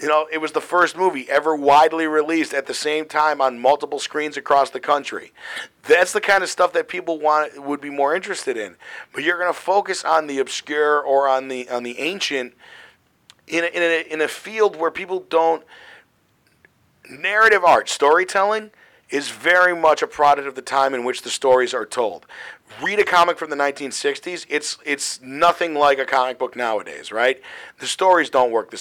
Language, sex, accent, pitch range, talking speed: English, male, American, 145-185 Hz, 195 wpm